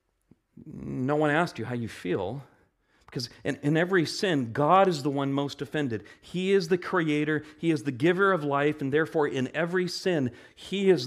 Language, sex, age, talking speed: English, male, 40-59, 190 wpm